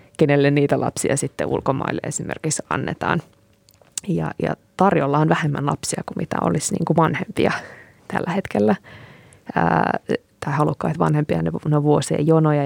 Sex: female